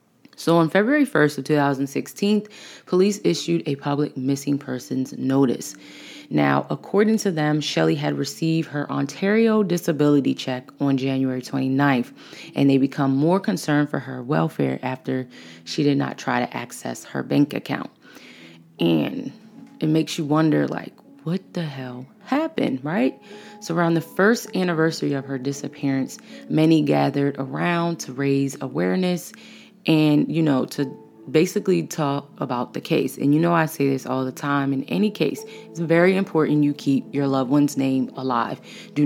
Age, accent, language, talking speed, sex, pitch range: 20-39, American, English, 155 wpm, female, 135-165 Hz